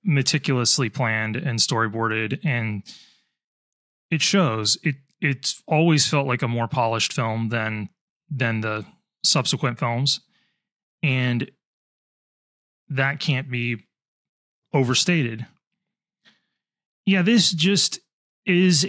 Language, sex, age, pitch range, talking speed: English, male, 20-39, 125-165 Hz, 95 wpm